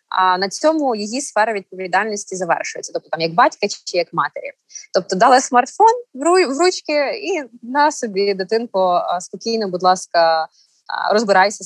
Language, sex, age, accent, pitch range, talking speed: Ukrainian, female, 20-39, native, 185-280 Hz, 140 wpm